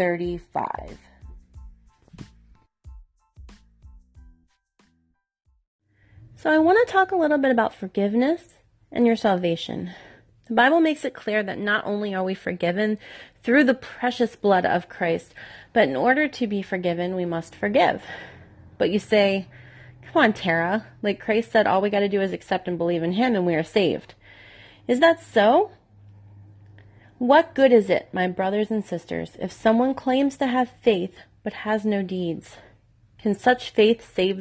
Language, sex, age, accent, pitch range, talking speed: English, female, 30-49, American, 170-235 Hz, 155 wpm